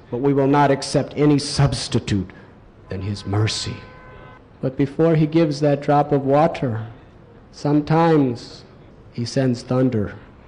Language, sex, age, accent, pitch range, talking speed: English, male, 50-69, American, 115-150 Hz, 125 wpm